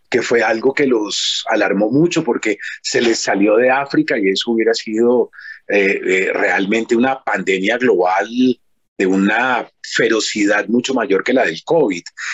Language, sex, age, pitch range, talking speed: Spanish, male, 30-49, 120-160 Hz, 155 wpm